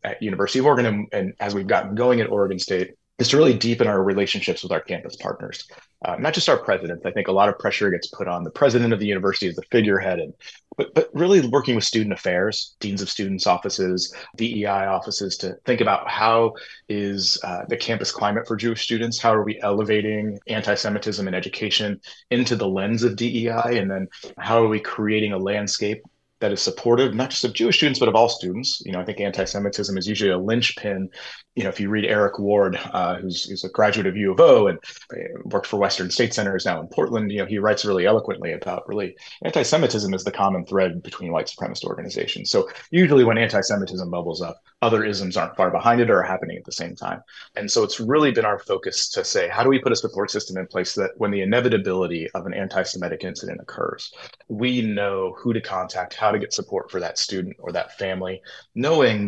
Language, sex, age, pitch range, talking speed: English, male, 30-49, 95-115 Hz, 220 wpm